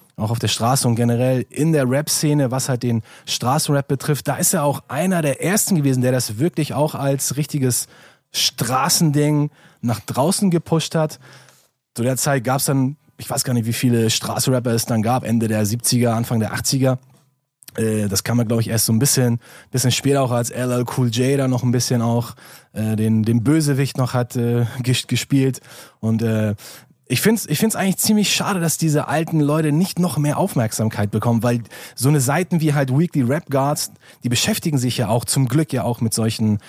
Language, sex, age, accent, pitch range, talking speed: German, male, 20-39, German, 120-145 Hz, 205 wpm